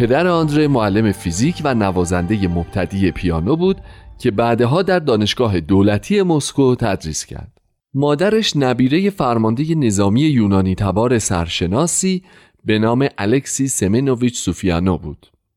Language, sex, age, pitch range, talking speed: Persian, male, 40-59, 95-150 Hz, 115 wpm